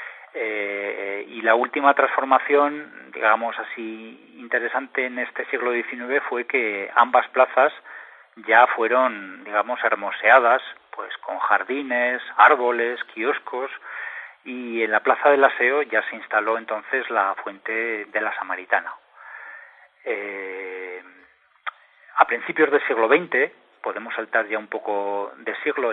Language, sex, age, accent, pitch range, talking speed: Spanish, male, 40-59, Spanish, 105-125 Hz, 125 wpm